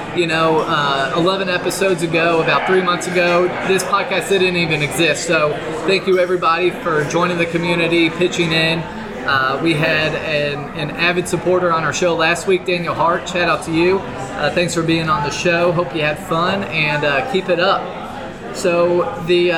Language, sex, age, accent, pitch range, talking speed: English, male, 20-39, American, 160-185 Hz, 185 wpm